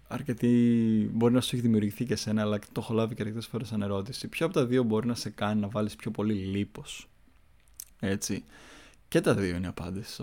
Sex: male